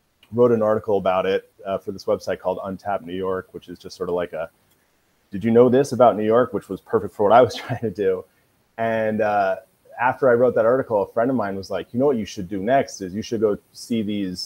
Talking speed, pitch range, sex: 260 wpm, 100-125 Hz, male